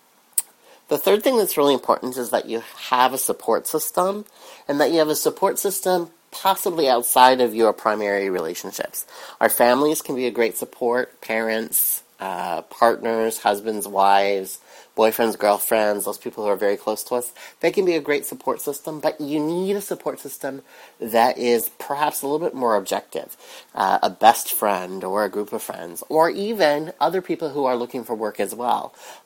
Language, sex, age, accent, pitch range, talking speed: English, male, 30-49, American, 110-150 Hz, 185 wpm